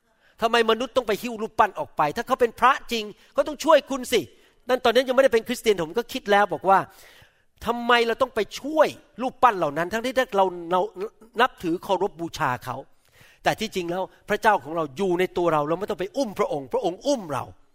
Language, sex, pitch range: Thai, male, 185-250 Hz